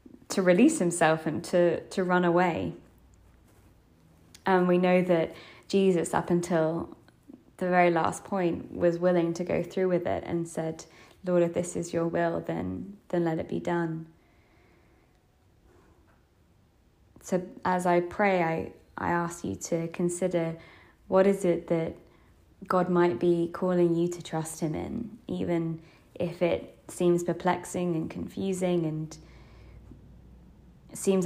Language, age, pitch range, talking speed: English, 20-39, 165-180 Hz, 140 wpm